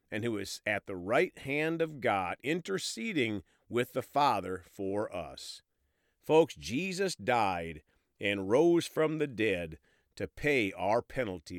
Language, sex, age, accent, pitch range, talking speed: English, male, 50-69, American, 95-150 Hz, 140 wpm